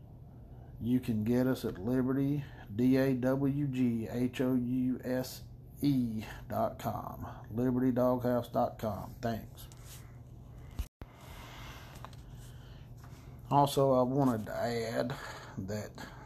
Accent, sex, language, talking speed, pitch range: American, male, English, 65 wpm, 115-130 Hz